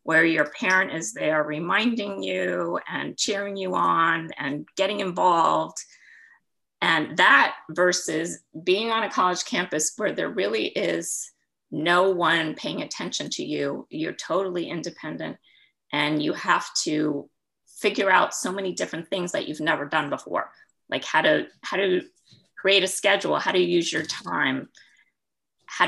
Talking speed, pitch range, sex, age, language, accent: 145 wpm, 160-200 Hz, female, 30-49, English, American